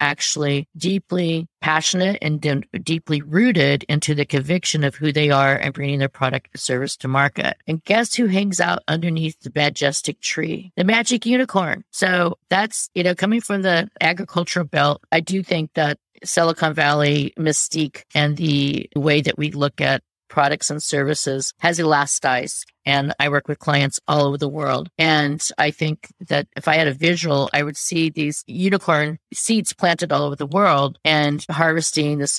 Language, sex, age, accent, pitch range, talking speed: English, female, 50-69, American, 145-175 Hz, 170 wpm